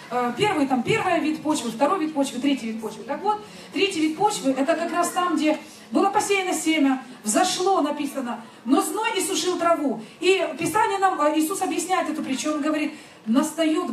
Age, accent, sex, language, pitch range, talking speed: 30-49, native, female, Russian, 270-375 Hz, 175 wpm